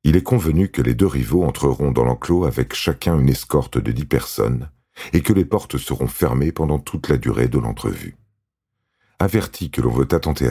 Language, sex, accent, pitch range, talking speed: French, male, French, 65-80 Hz, 195 wpm